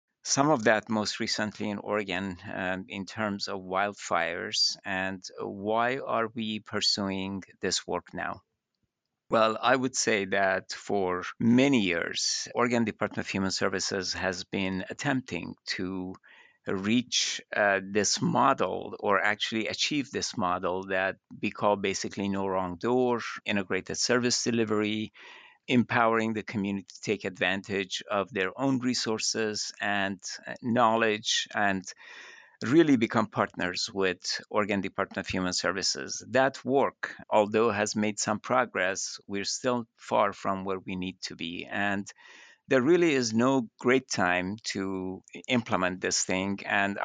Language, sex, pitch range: English, male, 95-115 Hz